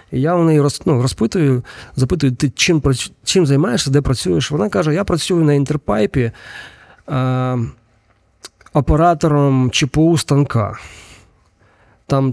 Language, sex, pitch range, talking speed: Ukrainian, male, 120-150 Hz, 120 wpm